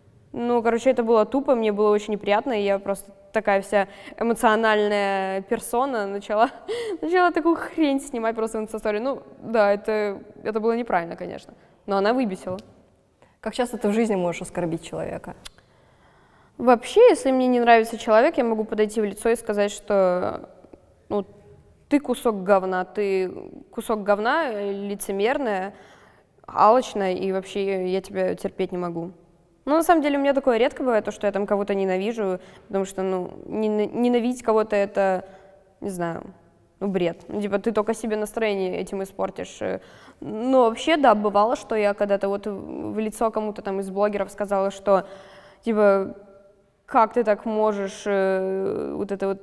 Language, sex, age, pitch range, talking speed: Russian, female, 10-29, 195-230 Hz, 155 wpm